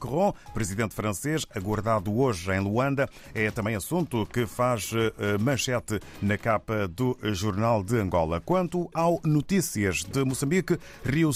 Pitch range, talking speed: 105-150 Hz, 130 wpm